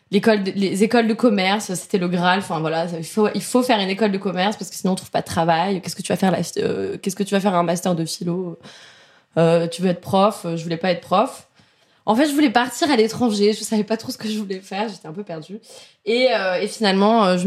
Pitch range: 185-245 Hz